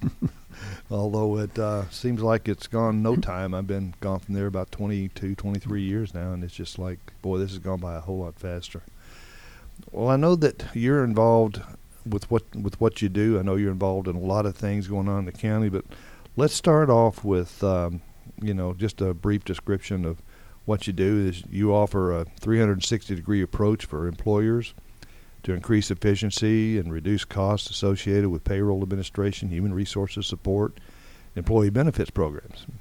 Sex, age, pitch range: male, 50-69, 90-105 Hz